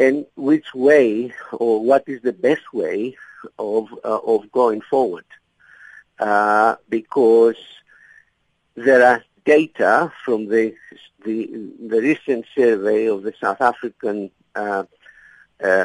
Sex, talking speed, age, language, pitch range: male, 115 wpm, 50-69, English, 115-155 Hz